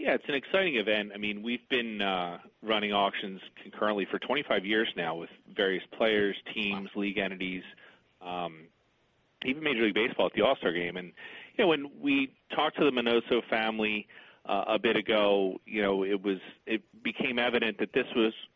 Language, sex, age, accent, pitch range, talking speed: English, male, 40-59, American, 95-110 Hz, 180 wpm